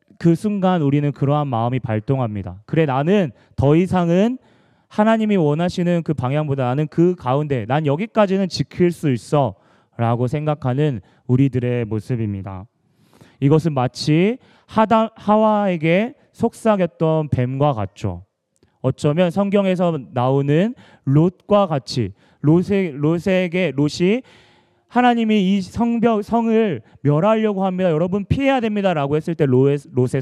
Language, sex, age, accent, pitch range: Korean, male, 30-49, native, 125-190 Hz